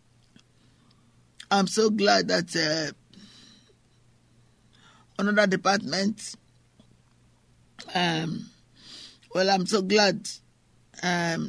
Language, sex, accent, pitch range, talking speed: English, male, Nigerian, 160-210 Hz, 70 wpm